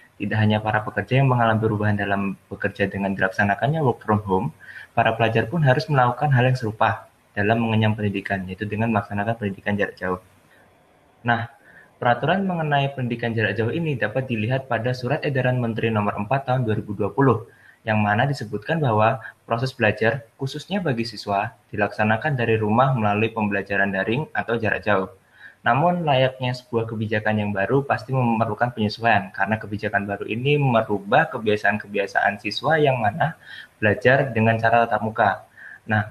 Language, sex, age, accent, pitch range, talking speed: Indonesian, male, 20-39, native, 105-125 Hz, 150 wpm